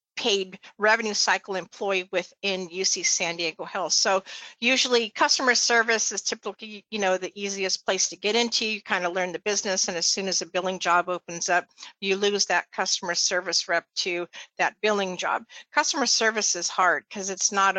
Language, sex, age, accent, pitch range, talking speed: English, female, 50-69, American, 180-215 Hz, 185 wpm